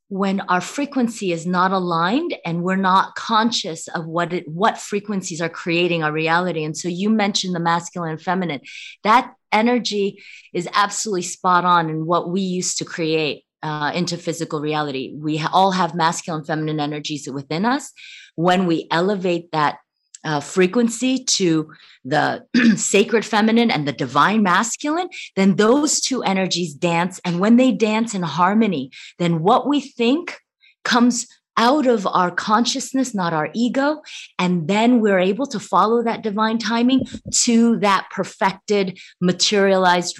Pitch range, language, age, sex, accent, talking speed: 170-225 Hz, English, 30-49, female, American, 150 wpm